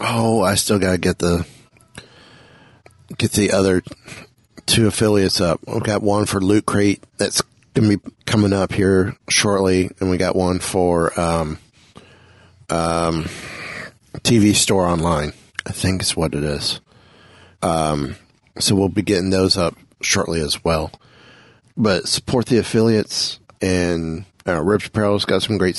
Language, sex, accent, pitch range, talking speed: English, male, American, 85-105 Hz, 145 wpm